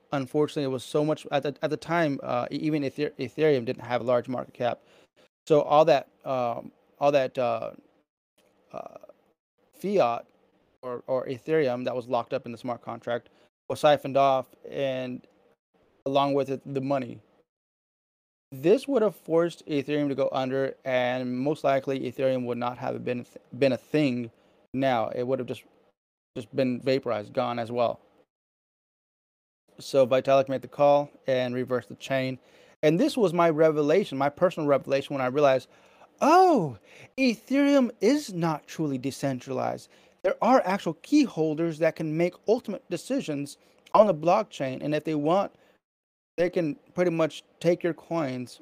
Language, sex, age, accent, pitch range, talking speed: English, male, 20-39, American, 130-160 Hz, 160 wpm